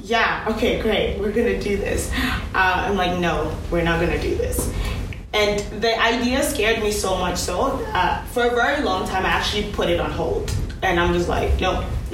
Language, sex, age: English, female, 20-39